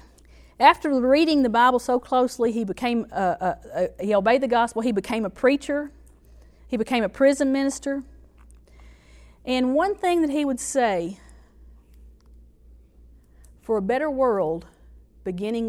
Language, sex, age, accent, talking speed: English, female, 40-59, American, 140 wpm